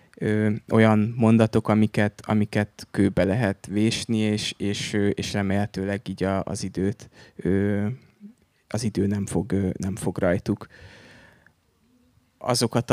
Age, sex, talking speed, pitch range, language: 20-39, male, 95 wpm, 95-110 Hz, Hungarian